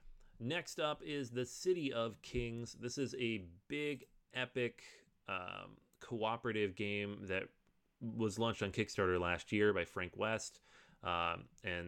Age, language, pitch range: 30-49, English, 90-120 Hz